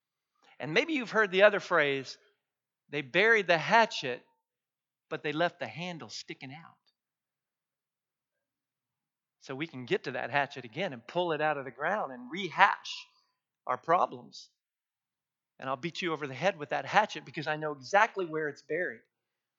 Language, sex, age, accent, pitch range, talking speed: English, male, 50-69, American, 165-220 Hz, 165 wpm